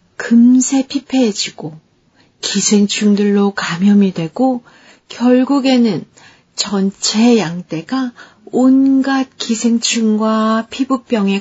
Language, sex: Korean, female